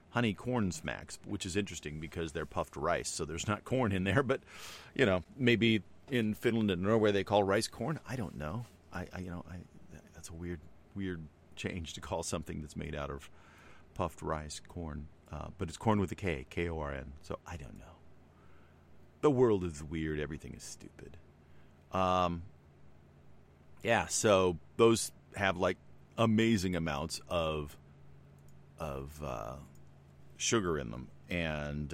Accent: American